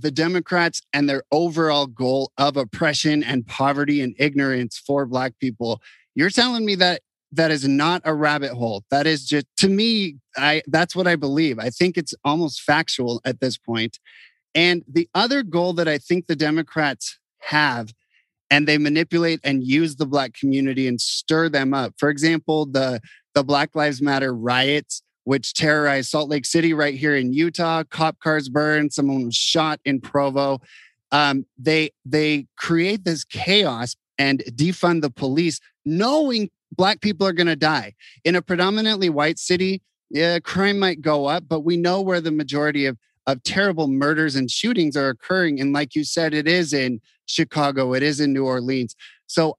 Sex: male